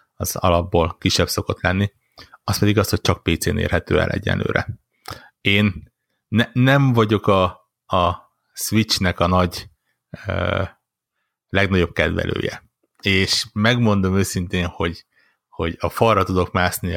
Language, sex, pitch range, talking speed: Hungarian, male, 90-105 Hz, 125 wpm